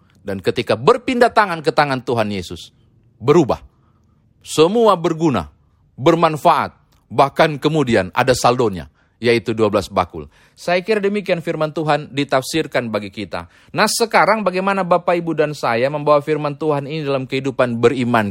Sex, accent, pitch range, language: male, native, 115-180 Hz, Indonesian